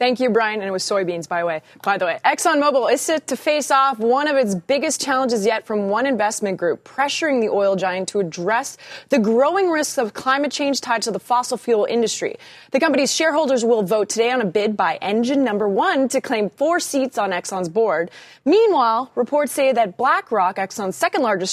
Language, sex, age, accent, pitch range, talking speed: English, female, 20-39, American, 200-275 Hz, 210 wpm